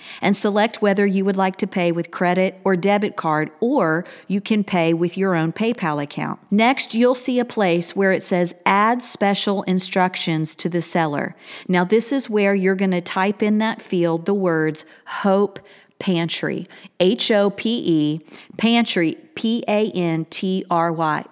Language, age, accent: English, 40-59, American